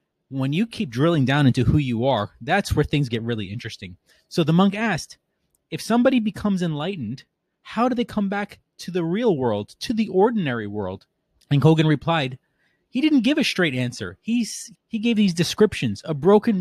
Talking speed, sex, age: 185 wpm, male, 30-49